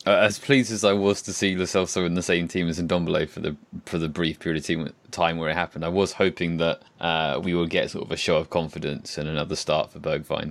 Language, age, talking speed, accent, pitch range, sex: English, 20-39, 255 wpm, British, 80-100 Hz, male